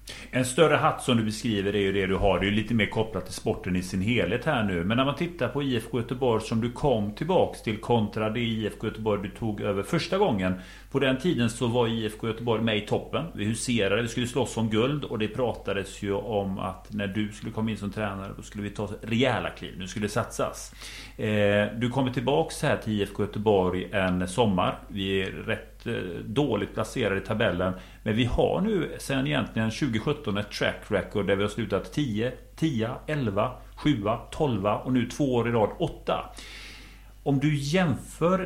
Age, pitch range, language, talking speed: 40-59, 105-140 Hz, Swedish, 205 wpm